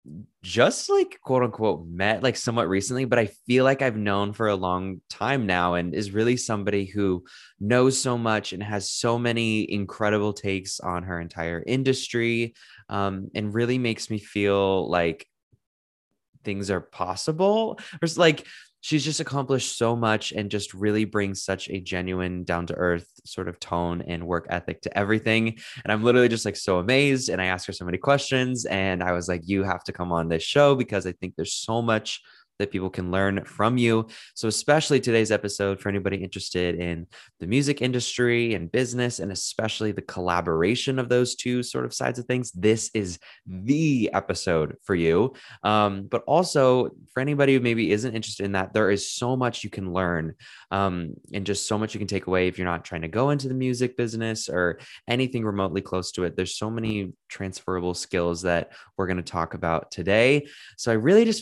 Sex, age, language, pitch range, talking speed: male, 20-39, English, 95-125 Hz, 195 wpm